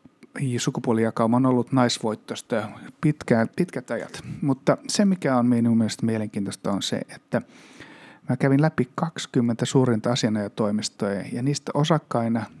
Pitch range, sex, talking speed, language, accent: 115-140 Hz, male, 120 wpm, Finnish, native